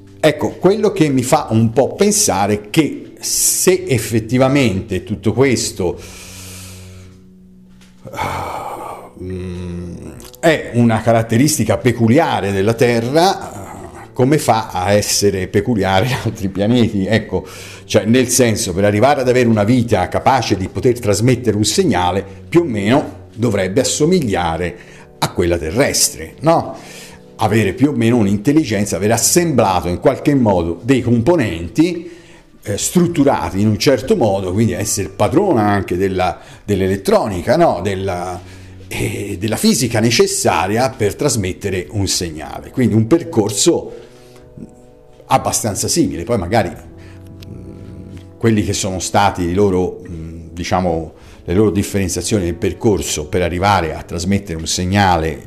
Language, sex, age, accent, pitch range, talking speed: Italian, male, 50-69, native, 95-120 Hz, 120 wpm